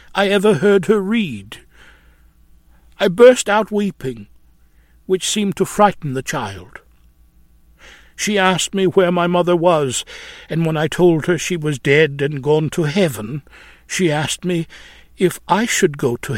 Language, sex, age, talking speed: English, male, 60-79, 155 wpm